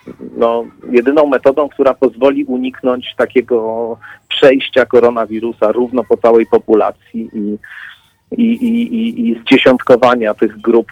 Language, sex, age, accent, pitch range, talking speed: Polish, male, 40-59, native, 105-125 Hz, 115 wpm